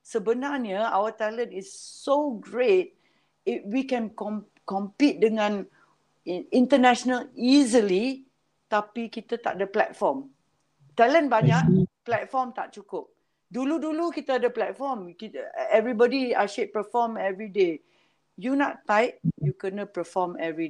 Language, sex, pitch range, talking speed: Malay, female, 185-235 Hz, 120 wpm